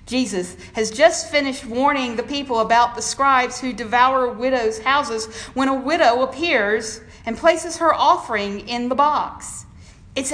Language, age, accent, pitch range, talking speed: English, 50-69, American, 195-280 Hz, 150 wpm